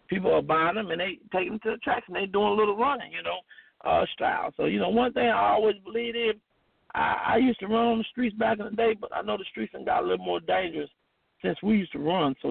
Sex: male